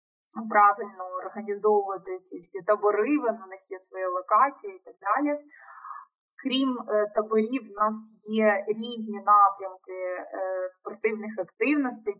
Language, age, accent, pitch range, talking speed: Ukrainian, 20-39, native, 190-225 Hz, 120 wpm